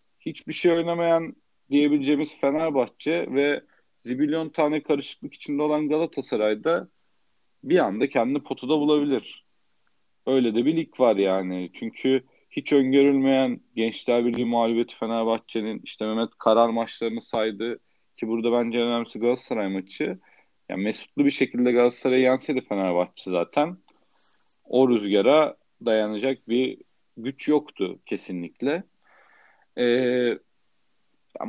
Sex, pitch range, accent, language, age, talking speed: male, 120-165 Hz, native, Turkish, 40-59, 110 wpm